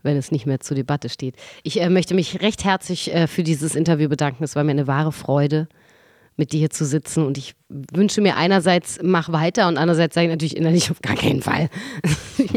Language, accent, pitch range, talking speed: German, German, 155-185 Hz, 225 wpm